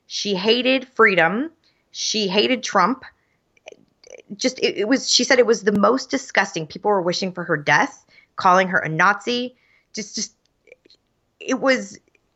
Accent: American